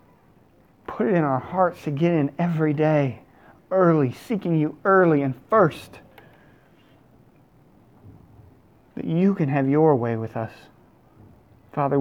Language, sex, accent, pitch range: English, male, American, 125-150 Hz